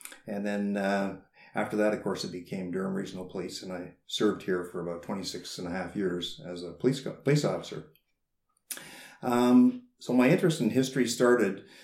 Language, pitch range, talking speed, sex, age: English, 90-120 Hz, 180 wpm, male, 50-69